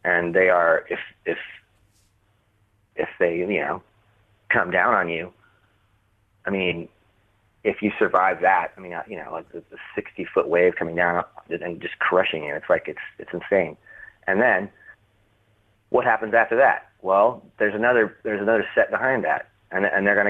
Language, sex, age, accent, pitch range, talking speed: English, male, 30-49, American, 90-105 Hz, 170 wpm